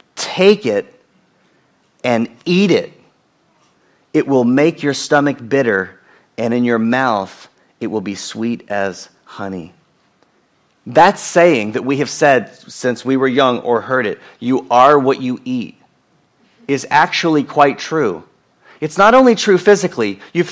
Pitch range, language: 130-195 Hz, English